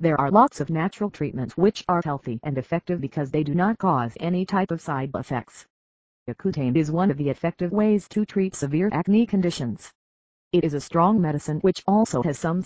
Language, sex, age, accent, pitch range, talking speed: English, female, 40-59, American, 140-190 Hz, 200 wpm